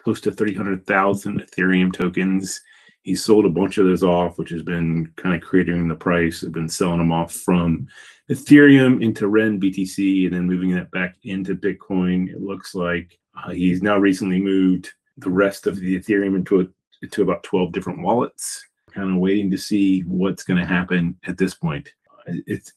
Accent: American